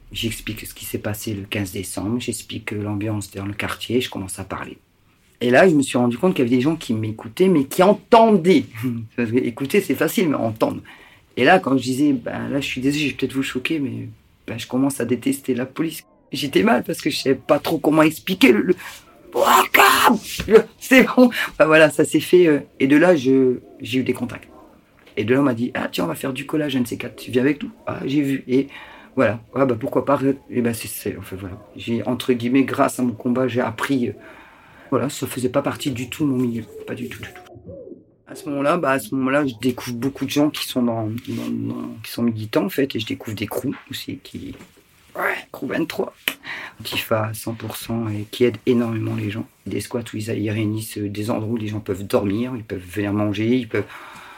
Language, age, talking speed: French, 40-59, 235 wpm